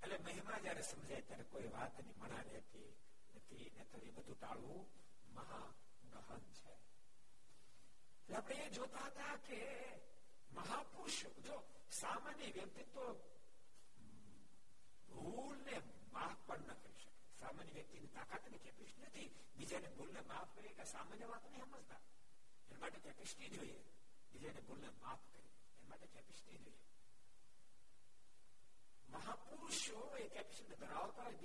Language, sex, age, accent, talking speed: Gujarati, male, 60-79, native, 80 wpm